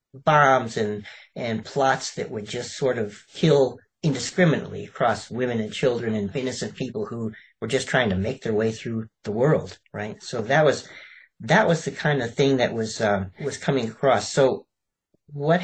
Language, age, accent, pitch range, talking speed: English, 40-59, American, 105-135 Hz, 180 wpm